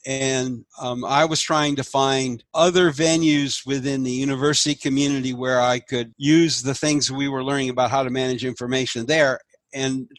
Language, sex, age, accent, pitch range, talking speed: English, male, 60-79, American, 125-150 Hz, 175 wpm